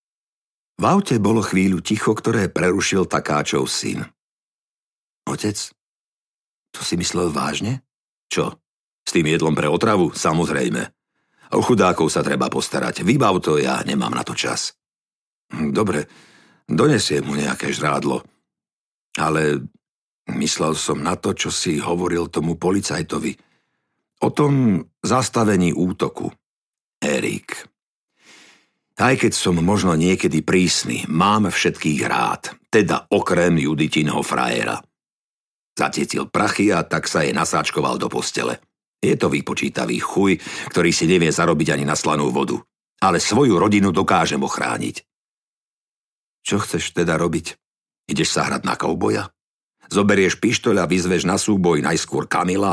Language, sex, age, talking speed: Slovak, male, 60-79, 125 wpm